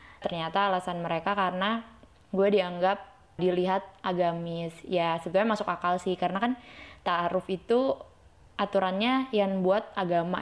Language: Indonesian